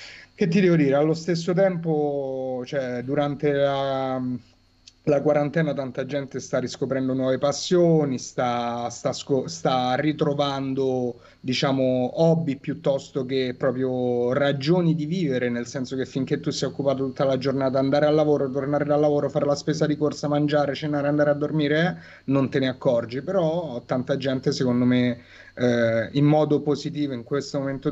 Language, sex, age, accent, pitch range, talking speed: Italian, male, 30-49, native, 130-150 Hz, 155 wpm